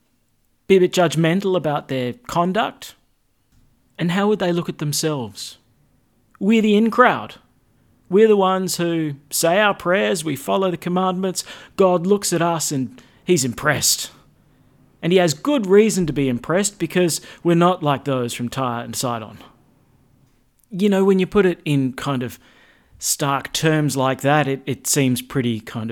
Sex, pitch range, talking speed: male, 125-185 Hz, 160 wpm